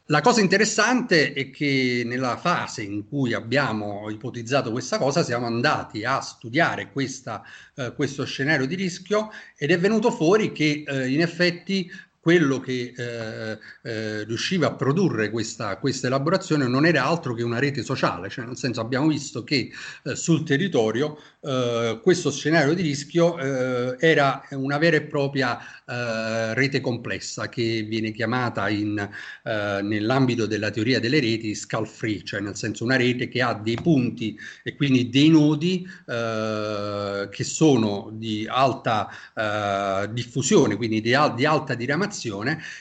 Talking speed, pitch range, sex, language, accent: 150 wpm, 115-160 Hz, male, Italian, native